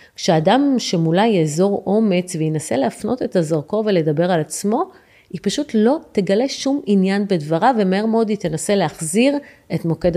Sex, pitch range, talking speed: female, 170-225 Hz, 155 wpm